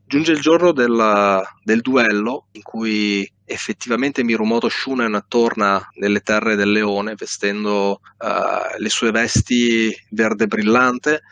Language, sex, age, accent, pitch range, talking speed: Italian, male, 30-49, native, 100-120 Hz, 120 wpm